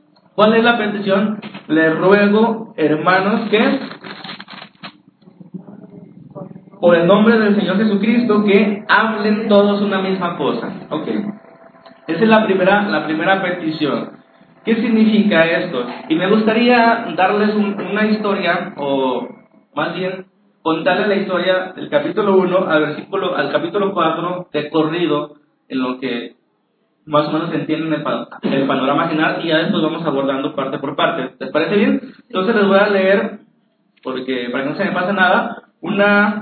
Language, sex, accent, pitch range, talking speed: Spanish, male, Mexican, 160-210 Hz, 145 wpm